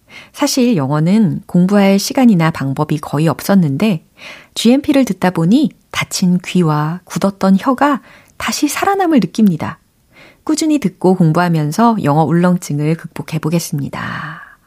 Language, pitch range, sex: Korean, 155-225 Hz, female